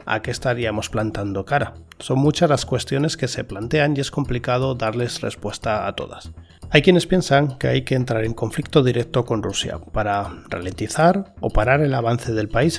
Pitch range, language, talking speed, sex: 110-145 Hz, Spanish, 185 wpm, male